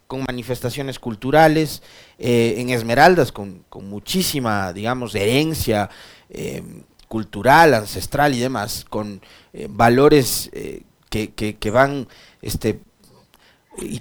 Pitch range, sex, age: 115-155 Hz, male, 40-59